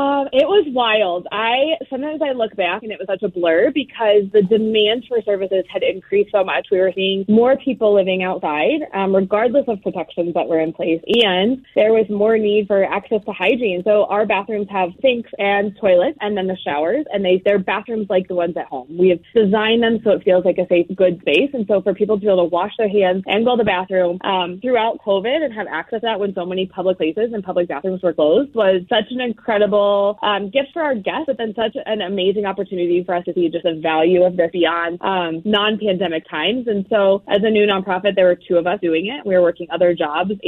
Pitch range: 175-215 Hz